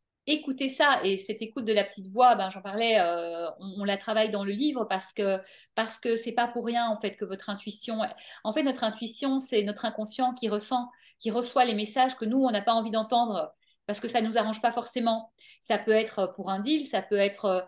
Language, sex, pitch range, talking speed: French, female, 205-260 Hz, 240 wpm